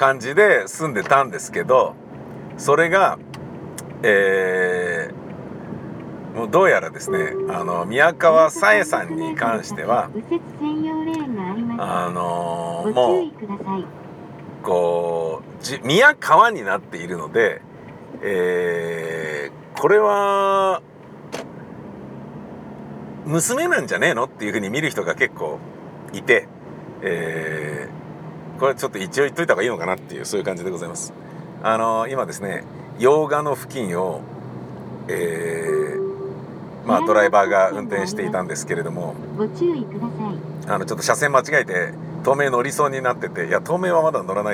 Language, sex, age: Japanese, male, 50-69